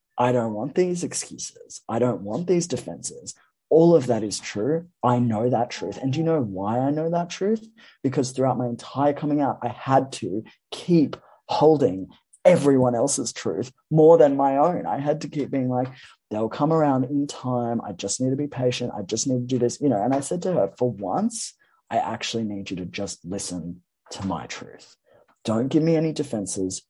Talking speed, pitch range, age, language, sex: 205 wpm, 95-140 Hz, 20-39, English, male